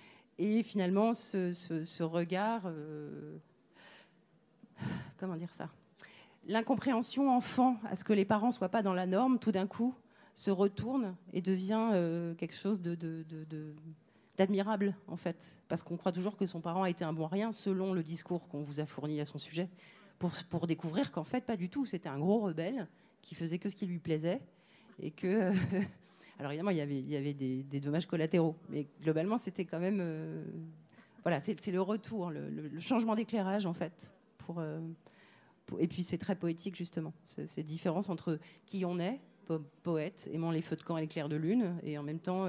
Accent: French